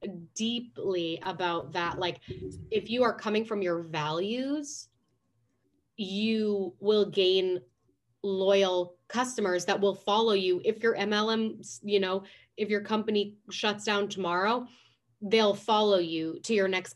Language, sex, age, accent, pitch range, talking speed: English, female, 20-39, American, 170-220 Hz, 130 wpm